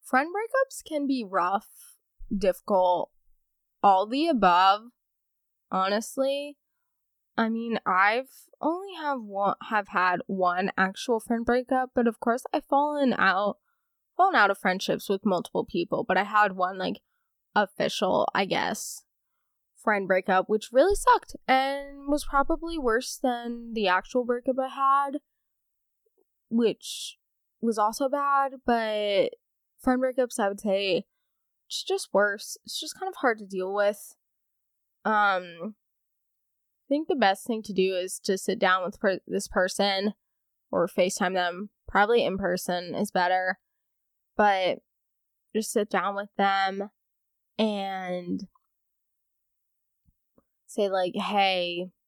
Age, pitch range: 10-29, 185-265 Hz